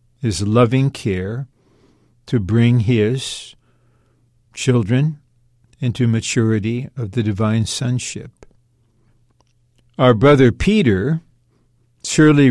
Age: 60-79